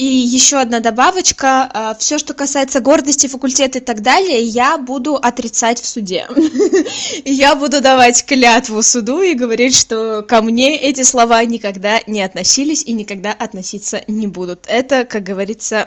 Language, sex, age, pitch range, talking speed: Russian, female, 20-39, 215-265 Hz, 150 wpm